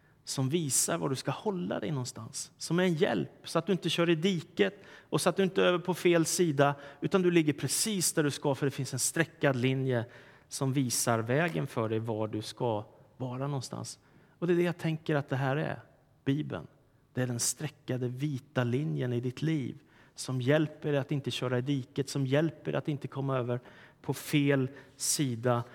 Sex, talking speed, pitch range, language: male, 210 wpm, 135-180 Hz, Swedish